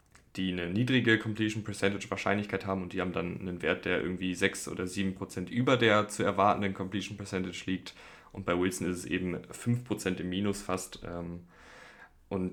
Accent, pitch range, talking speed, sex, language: German, 95-110 Hz, 170 wpm, male, German